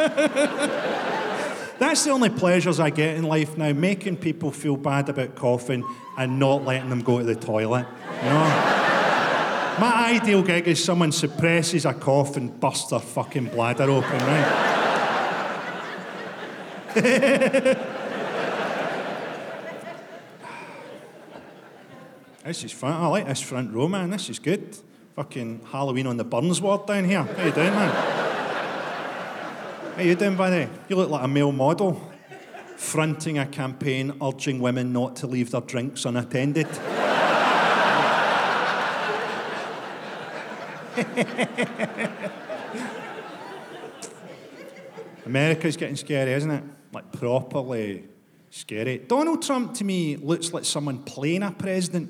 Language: English